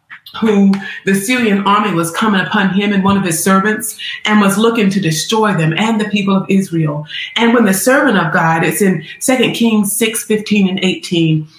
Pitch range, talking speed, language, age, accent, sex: 195-240 Hz, 195 wpm, English, 30-49, American, female